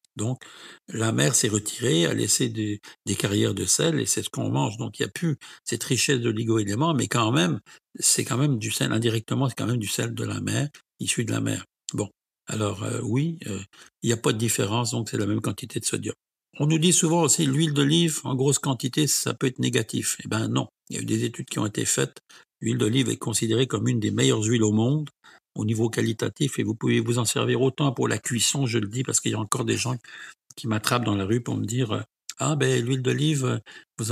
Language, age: French, 60-79